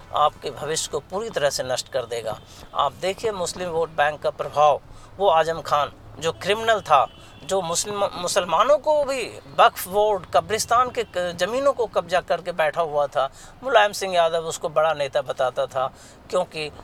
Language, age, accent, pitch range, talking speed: Hindi, 60-79, native, 145-195 Hz, 165 wpm